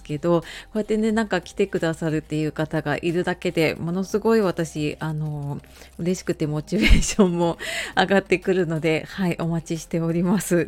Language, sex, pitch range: Japanese, female, 160-225 Hz